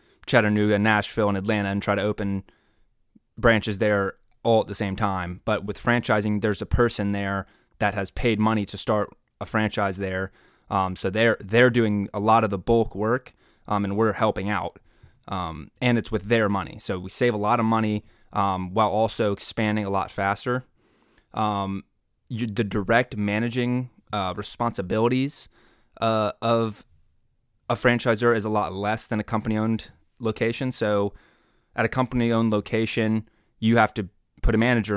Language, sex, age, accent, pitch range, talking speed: English, male, 20-39, American, 100-115 Hz, 170 wpm